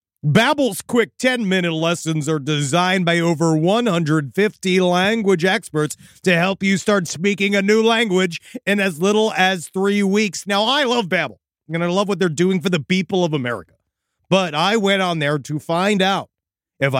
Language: English